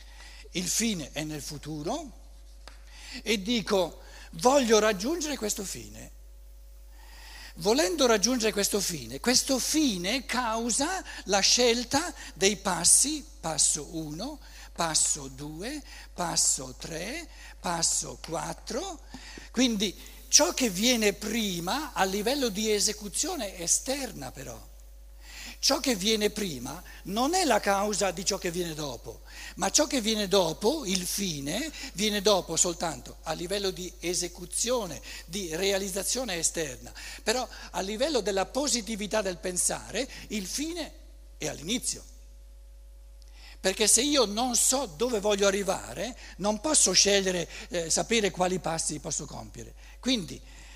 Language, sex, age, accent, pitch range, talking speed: Italian, male, 60-79, native, 165-245 Hz, 120 wpm